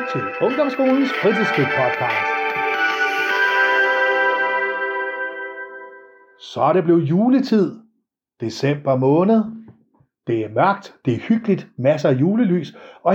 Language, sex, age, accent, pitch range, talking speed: Danish, male, 60-79, native, 120-185 Hz, 90 wpm